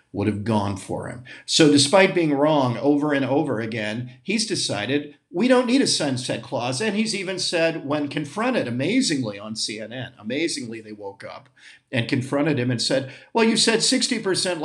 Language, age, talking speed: English, 50-69, 175 wpm